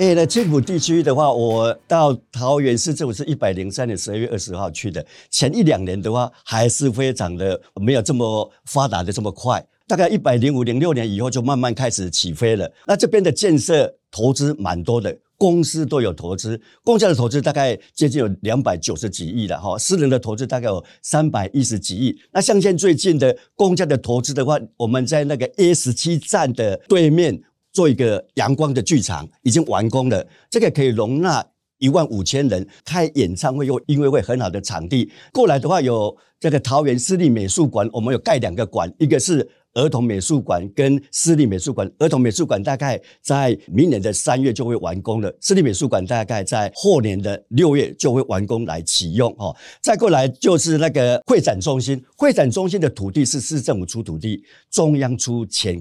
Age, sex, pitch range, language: 50-69, male, 110-150 Hz, Chinese